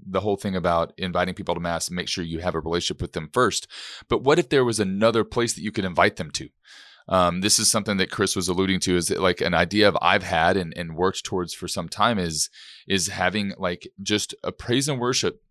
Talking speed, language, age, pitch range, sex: 250 wpm, English, 30-49, 90-110 Hz, male